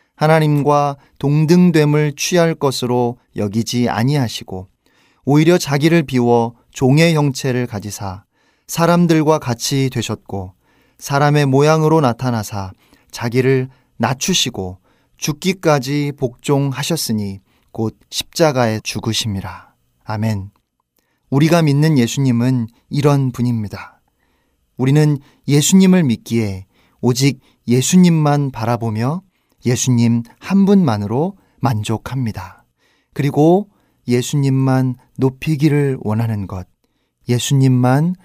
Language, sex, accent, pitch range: Korean, male, native, 110-150 Hz